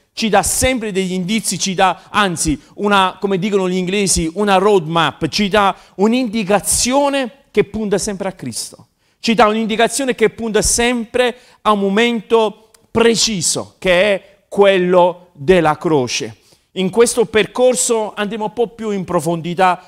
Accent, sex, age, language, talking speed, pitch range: native, male, 40-59, Italian, 140 wpm, 170-225 Hz